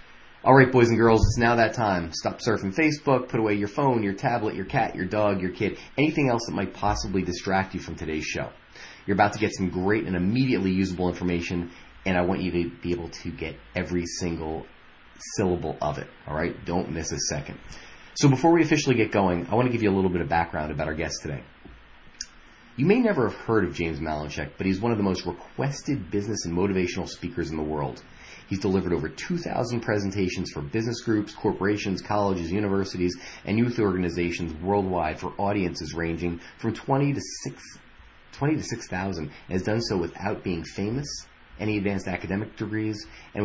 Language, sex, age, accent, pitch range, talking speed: English, male, 30-49, American, 85-110 Hz, 190 wpm